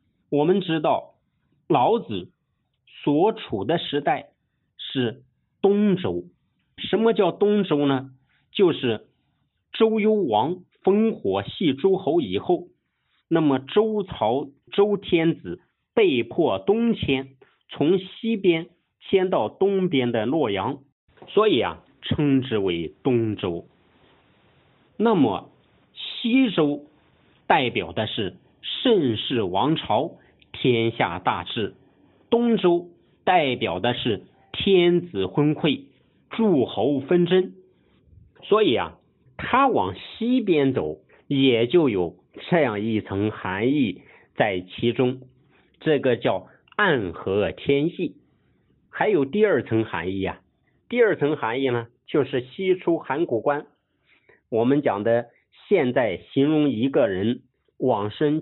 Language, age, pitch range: Chinese, 50-69, 125-185 Hz